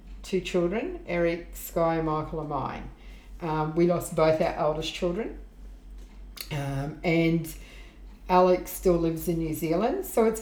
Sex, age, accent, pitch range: female, 50-69, Australian, 160-190 Hz